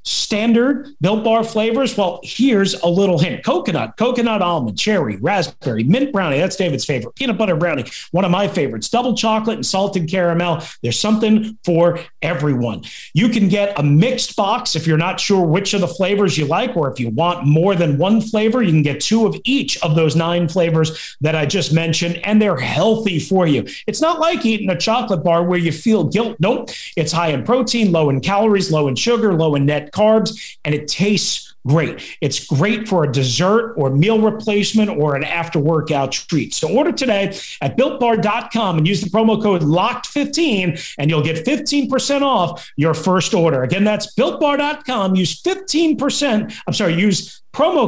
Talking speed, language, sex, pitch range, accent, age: 185 wpm, English, male, 165-225 Hz, American, 40-59